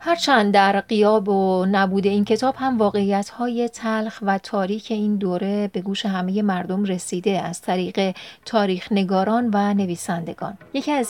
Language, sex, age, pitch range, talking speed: Persian, female, 30-49, 195-225 Hz, 145 wpm